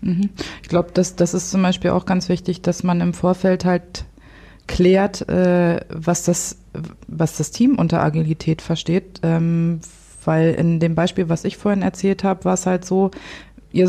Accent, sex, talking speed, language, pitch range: German, female, 175 wpm, German, 165-190 Hz